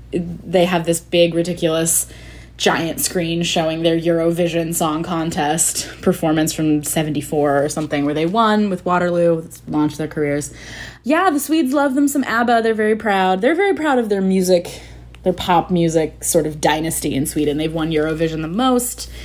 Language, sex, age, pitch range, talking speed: English, female, 20-39, 155-205 Hz, 170 wpm